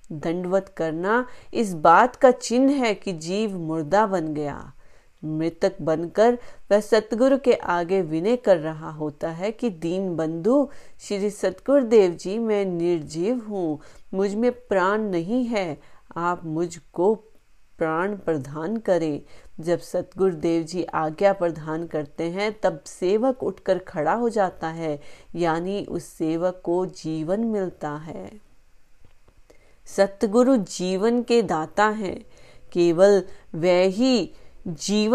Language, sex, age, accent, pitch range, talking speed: Hindi, female, 30-49, native, 165-210 Hz, 125 wpm